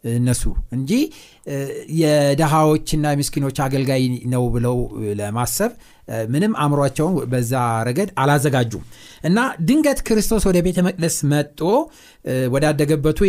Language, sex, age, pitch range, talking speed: Amharic, male, 60-79, 125-185 Hz, 90 wpm